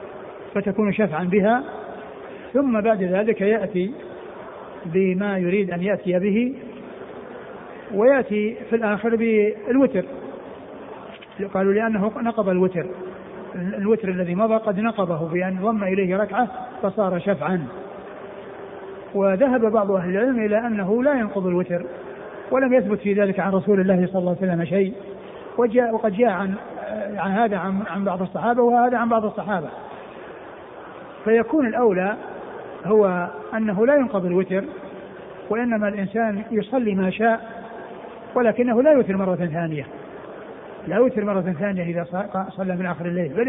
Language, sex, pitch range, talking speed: Arabic, male, 190-230 Hz, 125 wpm